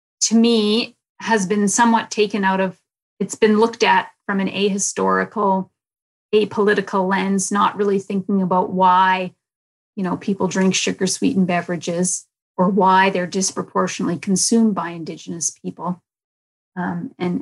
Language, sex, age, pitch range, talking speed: English, female, 30-49, 180-210 Hz, 130 wpm